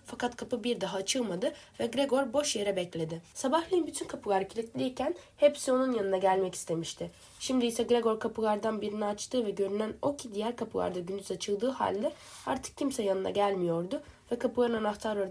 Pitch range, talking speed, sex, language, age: 195-255 Hz, 160 wpm, female, Turkish, 10-29